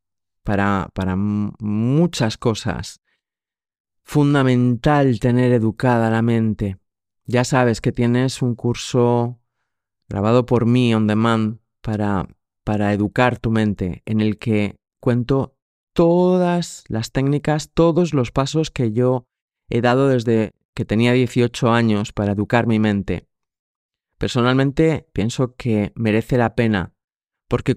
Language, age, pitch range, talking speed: Spanish, 30-49, 105-125 Hz, 120 wpm